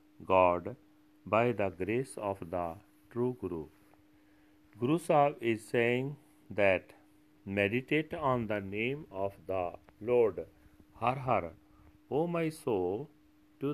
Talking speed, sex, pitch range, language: 120 wpm, male, 100-135 Hz, Punjabi